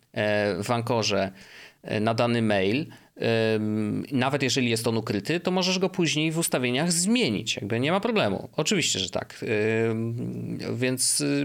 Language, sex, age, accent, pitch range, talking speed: Polish, male, 30-49, native, 110-145 Hz, 130 wpm